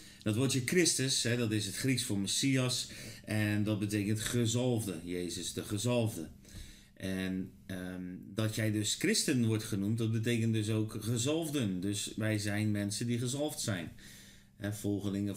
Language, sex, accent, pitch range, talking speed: Dutch, male, Dutch, 100-120 Hz, 140 wpm